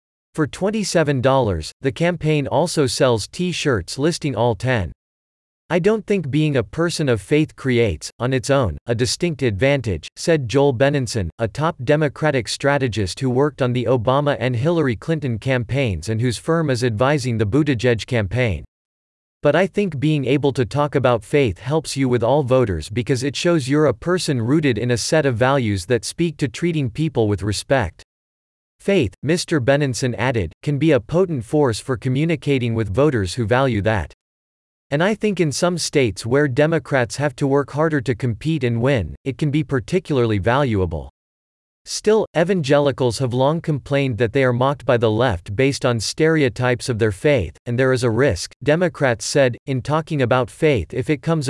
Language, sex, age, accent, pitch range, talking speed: English, male, 40-59, American, 115-150 Hz, 175 wpm